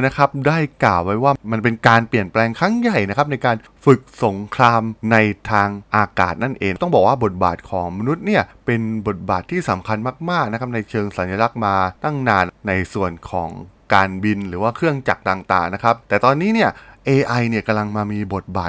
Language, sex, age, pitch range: Thai, male, 20-39, 100-135 Hz